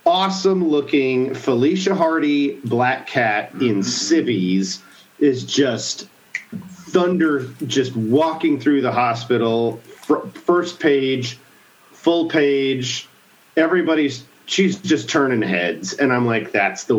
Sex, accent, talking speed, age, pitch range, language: male, American, 105 wpm, 40-59, 125-170 Hz, English